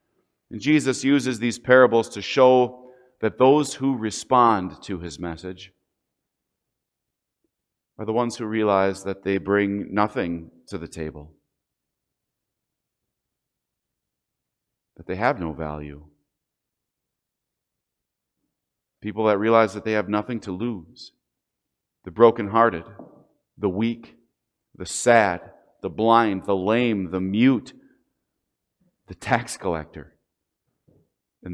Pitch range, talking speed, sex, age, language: 95-135 Hz, 105 wpm, male, 40-59, English